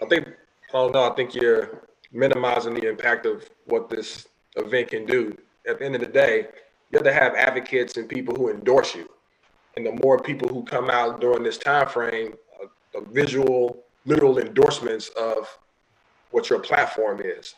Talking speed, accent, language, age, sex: 185 wpm, American, English, 20-39, male